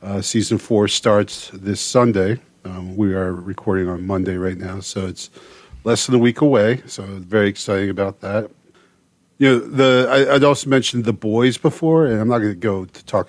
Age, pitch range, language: 40-59, 95-120 Hz, English